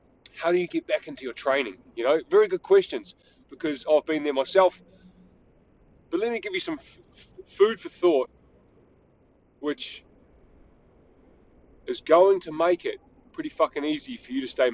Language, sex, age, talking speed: English, male, 30-49, 170 wpm